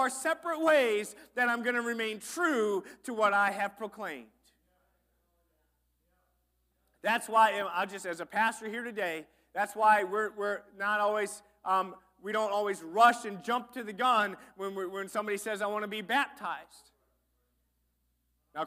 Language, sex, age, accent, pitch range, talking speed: English, male, 30-49, American, 180-240 Hz, 160 wpm